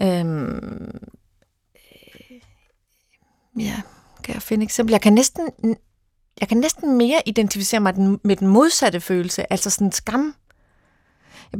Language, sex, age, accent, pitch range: Danish, female, 30-49, native, 180-220 Hz